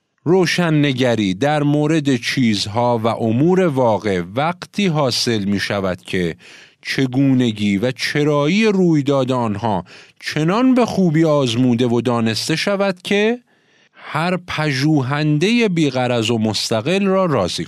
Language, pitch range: Persian, 125-180 Hz